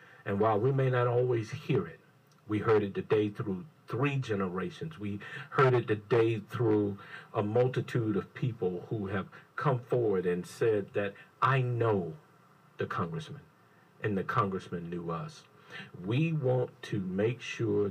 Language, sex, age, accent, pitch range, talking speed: English, male, 50-69, American, 105-145 Hz, 150 wpm